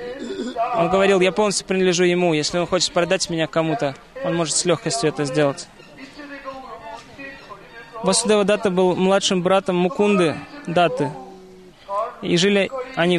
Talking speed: 125 wpm